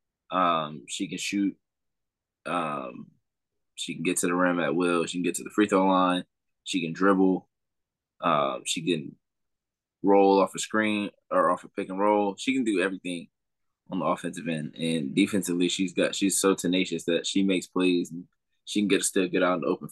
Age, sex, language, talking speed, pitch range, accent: 20-39, male, English, 200 wpm, 90-100 Hz, American